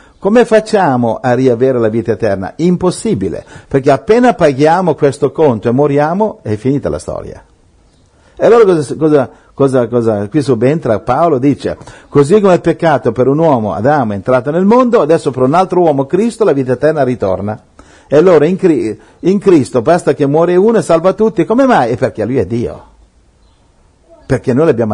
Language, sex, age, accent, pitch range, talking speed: Italian, male, 60-79, native, 120-175 Hz, 175 wpm